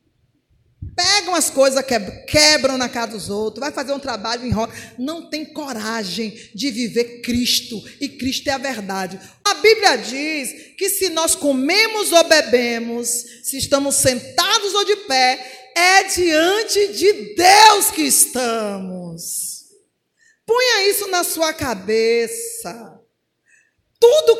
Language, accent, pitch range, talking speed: Portuguese, Brazilian, 240-375 Hz, 130 wpm